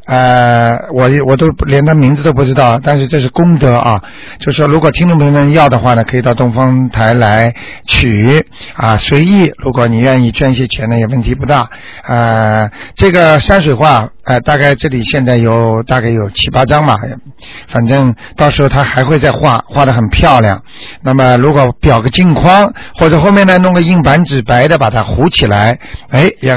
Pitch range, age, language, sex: 115-150 Hz, 50-69, Chinese, male